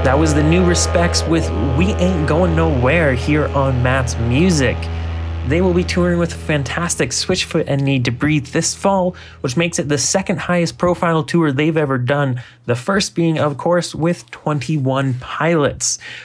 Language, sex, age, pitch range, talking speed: English, male, 20-39, 120-160 Hz, 170 wpm